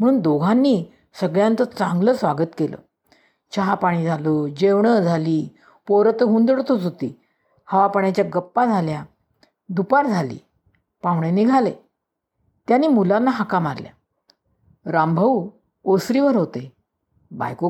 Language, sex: Marathi, female